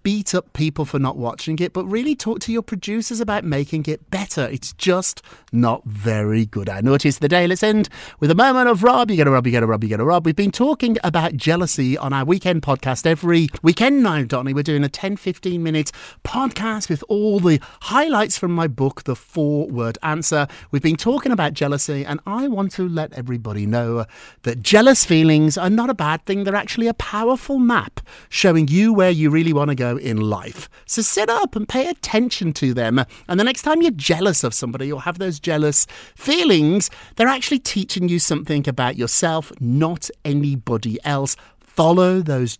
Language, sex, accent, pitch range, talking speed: English, male, British, 135-200 Hz, 205 wpm